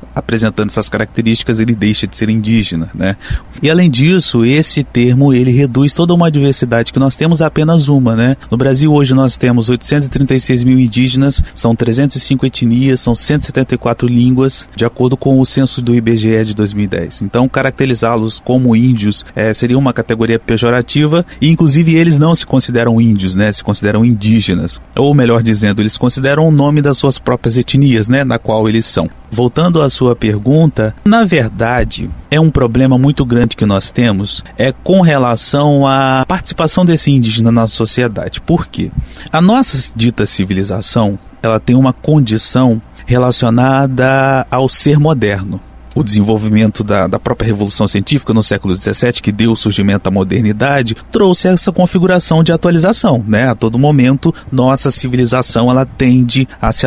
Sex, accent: male, Brazilian